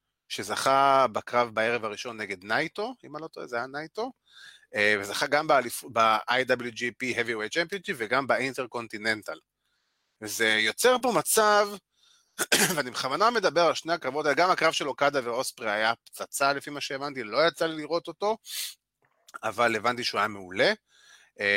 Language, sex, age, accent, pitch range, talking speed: Hebrew, male, 30-49, native, 120-195 Hz, 135 wpm